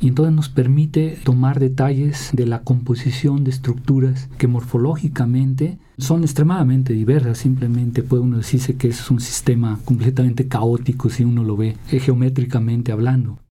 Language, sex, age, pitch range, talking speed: Spanish, male, 50-69, 120-135 Hz, 145 wpm